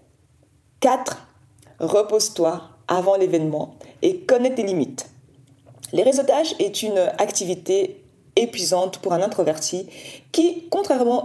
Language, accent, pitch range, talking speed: French, French, 175-245 Hz, 100 wpm